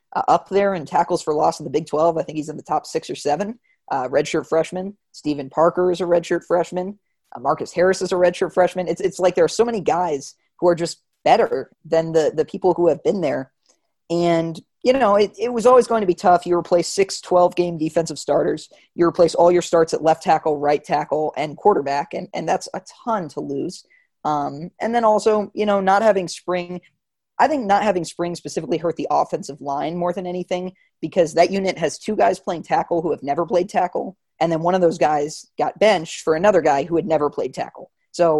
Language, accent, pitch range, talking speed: English, American, 155-190 Hz, 225 wpm